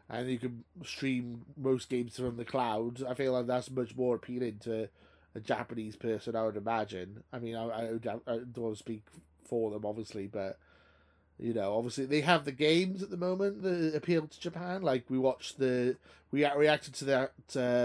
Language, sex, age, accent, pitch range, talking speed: English, male, 20-39, British, 110-135 Hz, 200 wpm